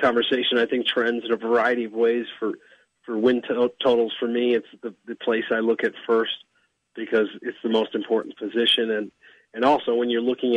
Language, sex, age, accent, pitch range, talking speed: English, male, 40-59, American, 110-125 Hz, 205 wpm